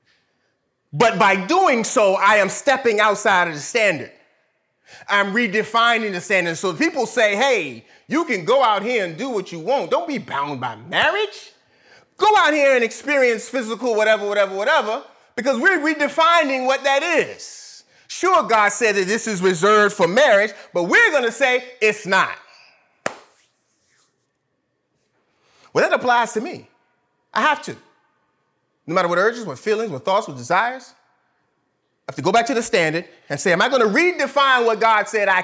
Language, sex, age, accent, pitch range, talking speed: English, male, 30-49, American, 185-255 Hz, 175 wpm